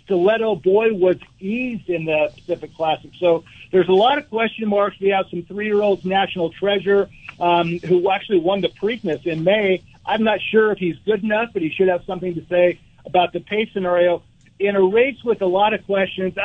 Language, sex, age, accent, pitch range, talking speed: English, male, 50-69, American, 170-200 Hz, 200 wpm